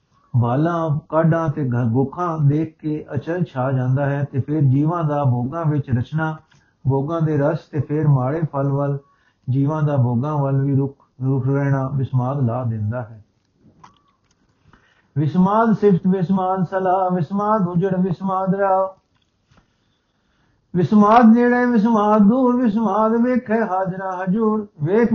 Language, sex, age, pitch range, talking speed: Punjabi, male, 60-79, 140-180 Hz, 130 wpm